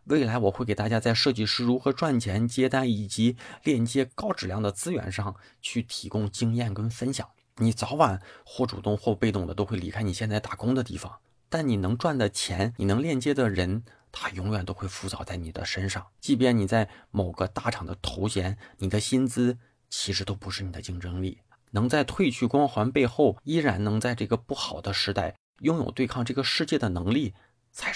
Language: Chinese